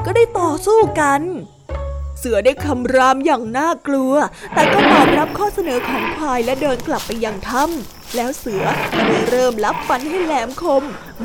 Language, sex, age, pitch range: Thai, female, 20-39, 245-325 Hz